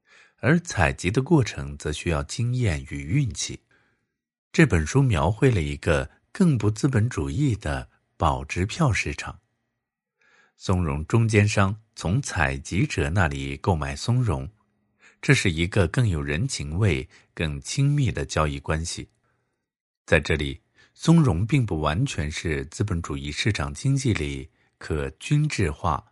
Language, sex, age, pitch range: Chinese, male, 50-69, 75-120 Hz